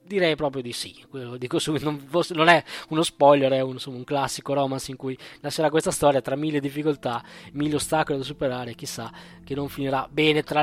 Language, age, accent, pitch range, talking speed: Italian, 20-39, native, 135-185 Hz, 175 wpm